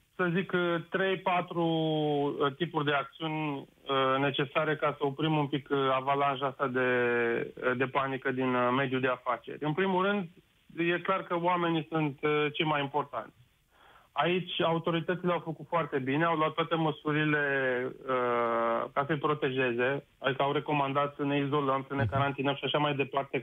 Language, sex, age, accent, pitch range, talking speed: Romanian, male, 30-49, native, 140-160 Hz, 155 wpm